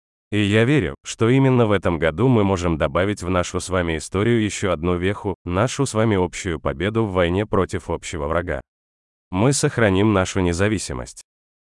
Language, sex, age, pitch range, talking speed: Russian, male, 30-49, 85-110 Hz, 170 wpm